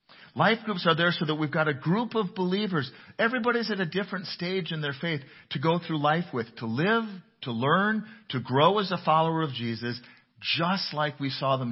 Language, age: English, 40-59